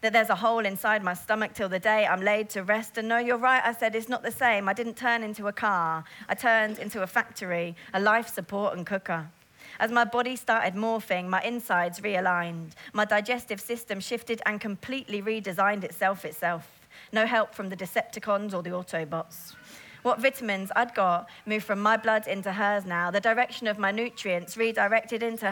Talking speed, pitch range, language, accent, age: 195 wpm, 185-225 Hz, English, British, 30-49